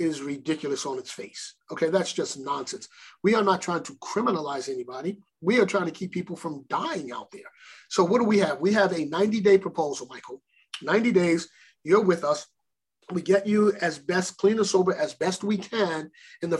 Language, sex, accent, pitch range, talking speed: English, male, American, 160-195 Hz, 200 wpm